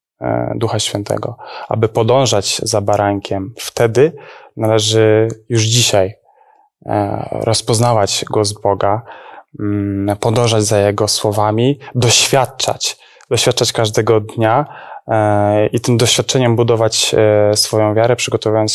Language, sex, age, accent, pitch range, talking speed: Polish, male, 20-39, native, 105-125 Hz, 90 wpm